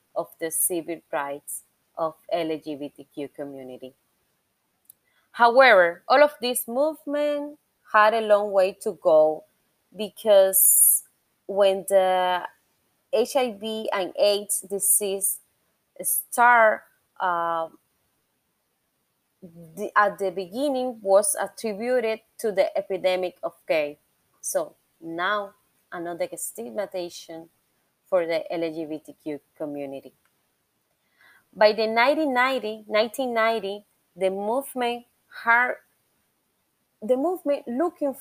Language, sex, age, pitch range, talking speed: English, female, 20-39, 175-235 Hz, 85 wpm